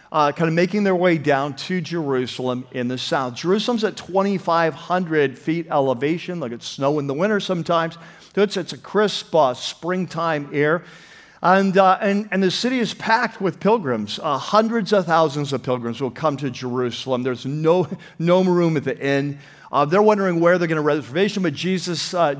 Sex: male